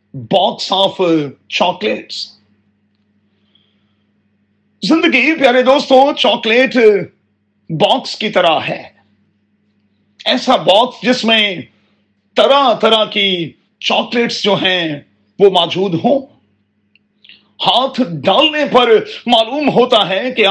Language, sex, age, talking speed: Urdu, male, 40-59, 90 wpm